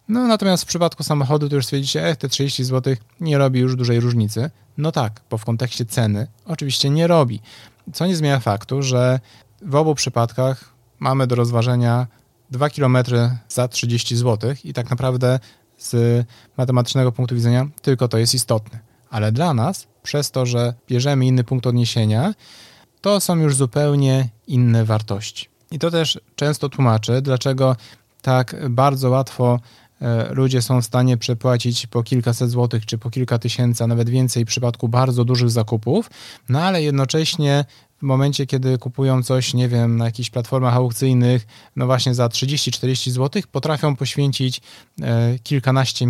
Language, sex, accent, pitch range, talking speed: Polish, male, native, 120-140 Hz, 155 wpm